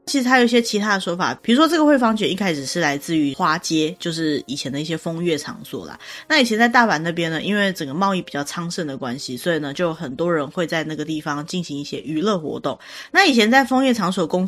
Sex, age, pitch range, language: female, 20-39, 155-215 Hz, Chinese